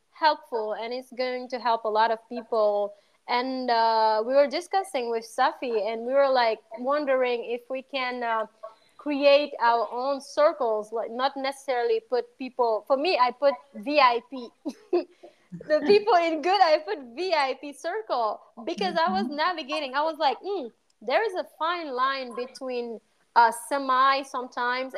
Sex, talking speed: female, 155 wpm